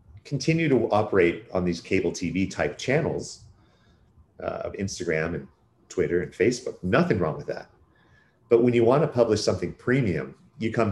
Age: 30-49